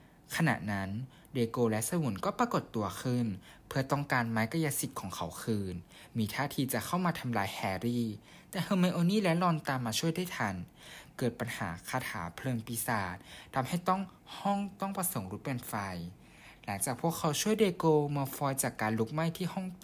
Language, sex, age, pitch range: Thai, male, 20-39, 110-160 Hz